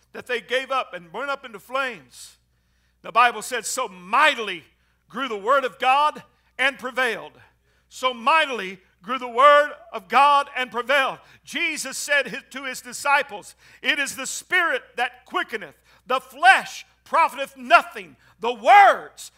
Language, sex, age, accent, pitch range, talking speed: English, male, 60-79, American, 260-360 Hz, 145 wpm